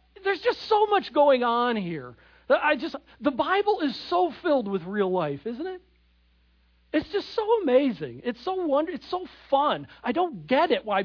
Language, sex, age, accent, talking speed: English, male, 40-59, American, 165 wpm